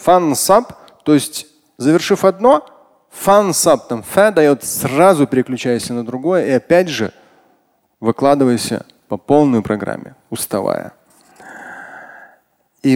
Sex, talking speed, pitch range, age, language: male, 110 wpm, 120-175 Hz, 30-49, Russian